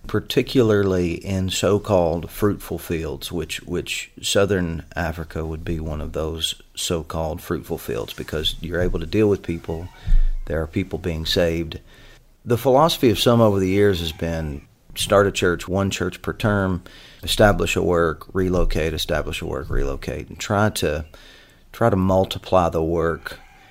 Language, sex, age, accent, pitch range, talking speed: English, male, 40-59, American, 85-105 Hz, 155 wpm